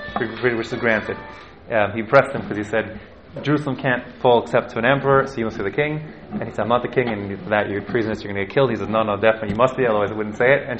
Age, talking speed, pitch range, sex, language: 20-39, 305 wpm, 105-130 Hz, male, English